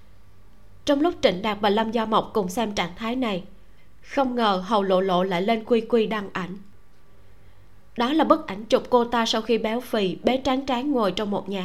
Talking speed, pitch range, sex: 215 wpm, 195-255 Hz, female